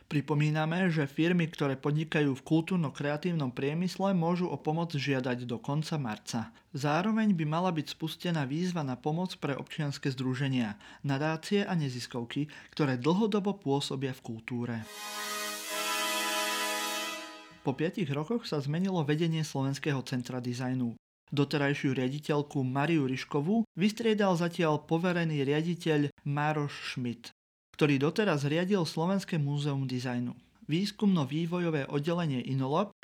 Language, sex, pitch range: Slovak, male, 135-175 Hz